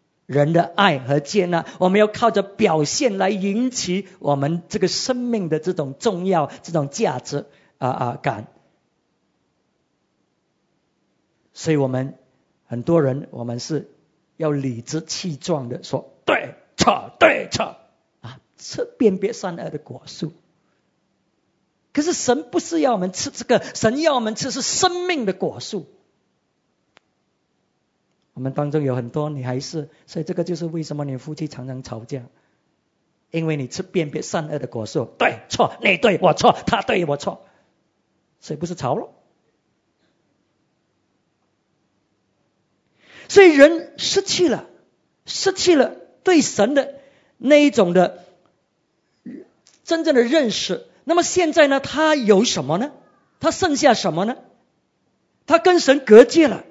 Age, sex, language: 50-69, male, English